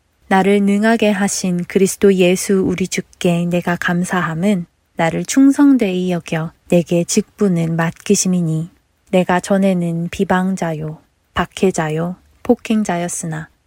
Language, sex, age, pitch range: Korean, female, 20-39, 170-200 Hz